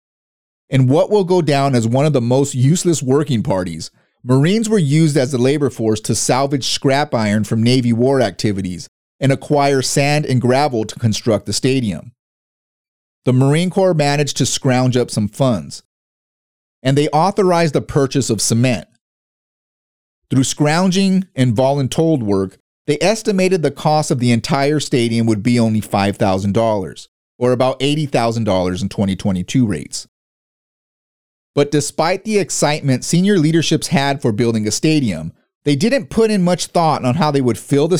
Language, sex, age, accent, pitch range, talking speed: English, male, 30-49, American, 115-155 Hz, 155 wpm